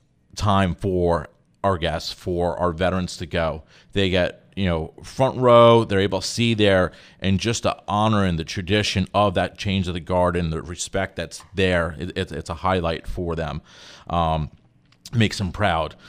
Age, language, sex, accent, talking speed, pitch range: 30-49, English, male, American, 175 wpm, 90-110 Hz